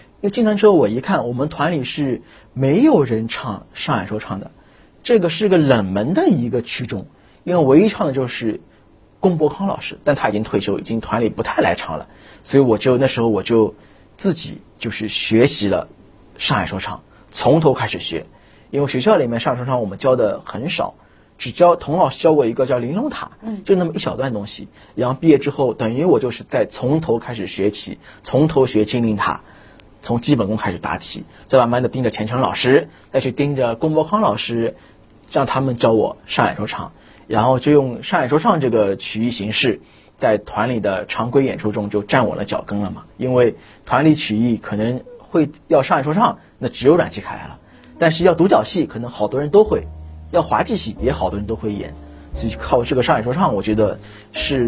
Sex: male